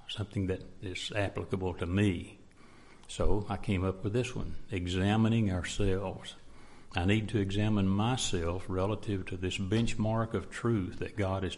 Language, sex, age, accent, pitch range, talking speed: English, male, 60-79, American, 95-110 Hz, 150 wpm